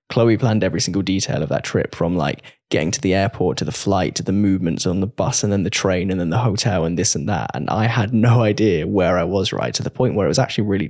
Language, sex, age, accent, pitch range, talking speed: English, male, 10-29, British, 95-115 Hz, 285 wpm